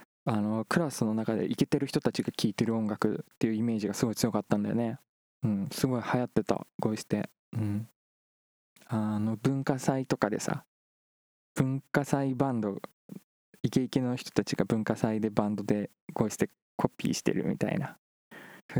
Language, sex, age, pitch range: Japanese, male, 20-39, 105-135 Hz